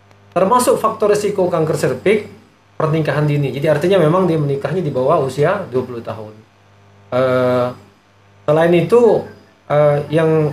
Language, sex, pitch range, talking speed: Indonesian, male, 115-155 Hz, 125 wpm